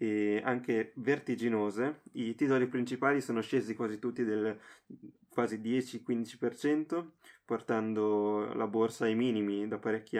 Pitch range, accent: 115-135 Hz, native